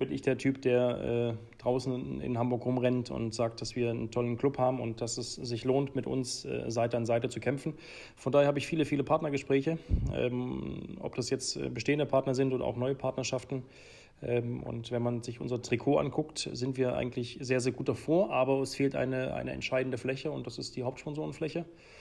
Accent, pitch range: German, 125-140 Hz